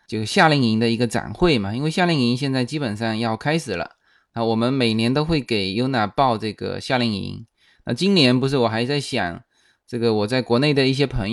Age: 20-39